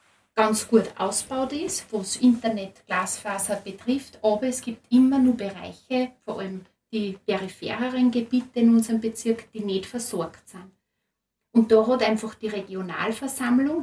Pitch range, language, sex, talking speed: 200-235 Hz, German, female, 135 wpm